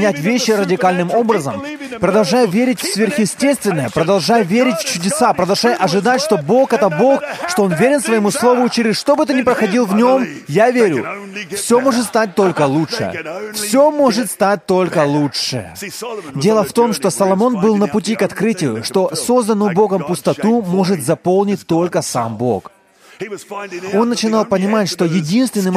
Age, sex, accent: 20-39, male, native